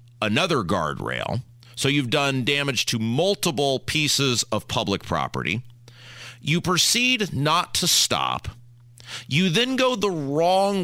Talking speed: 120 wpm